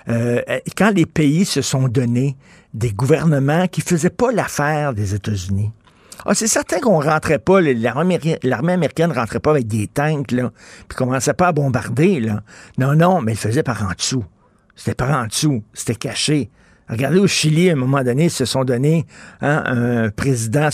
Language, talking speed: French, 195 wpm